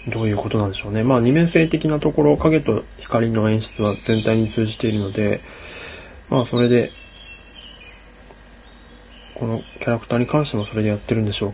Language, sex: Japanese, male